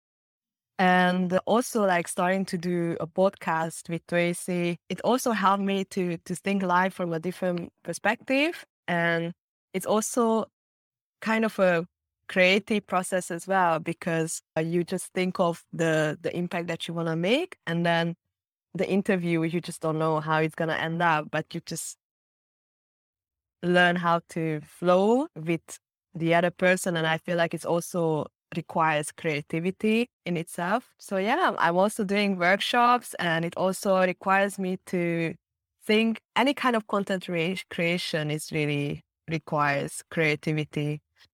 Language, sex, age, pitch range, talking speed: English, female, 20-39, 160-185 Hz, 150 wpm